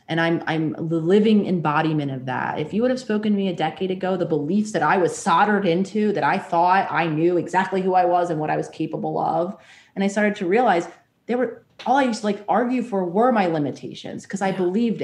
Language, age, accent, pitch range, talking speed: English, 30-49, American, 160-190 Hz, 240 wpm